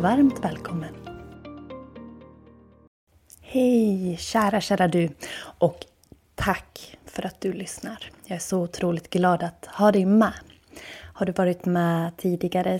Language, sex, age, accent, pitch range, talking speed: Swedish, female, 30-49, native, 165-225 Hz, 120 wpm